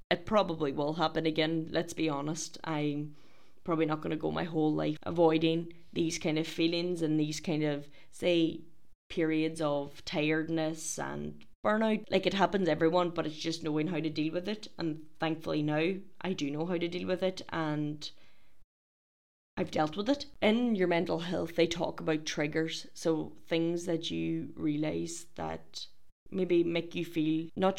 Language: English